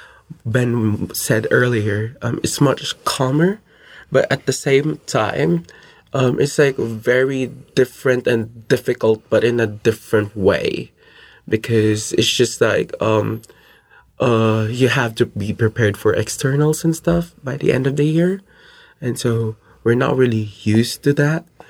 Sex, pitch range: male, 115-135 Hz